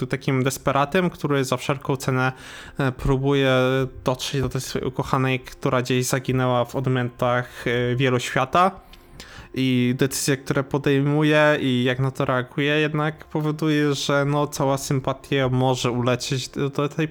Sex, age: male, 20-39